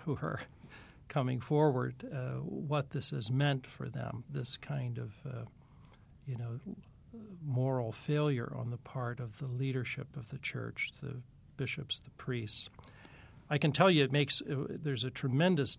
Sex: male